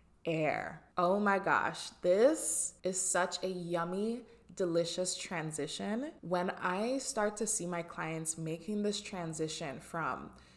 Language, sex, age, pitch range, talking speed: English, female, 20-39, 165-210 Hz, 125 wpm